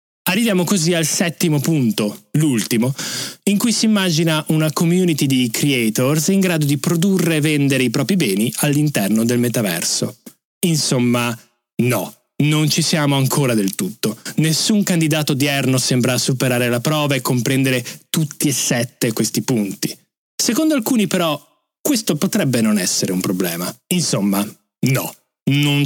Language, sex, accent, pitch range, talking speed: Italian, male, native, 125-170 Hz, 140 wpm